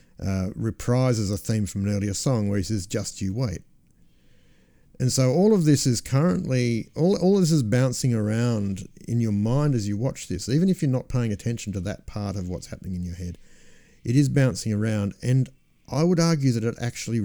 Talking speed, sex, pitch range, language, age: 210 wpm, male, 100-125 Hz, English, 50-69